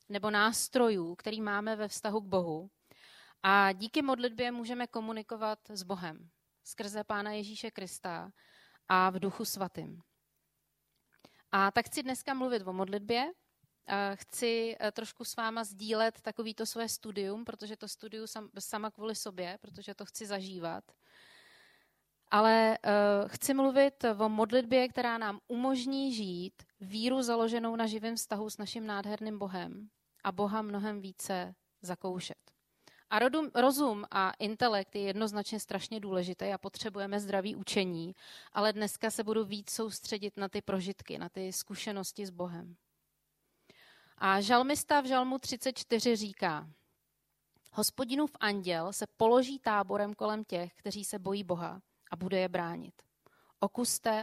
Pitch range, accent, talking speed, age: 195-225 Hz, native, 135 wpm, 30-49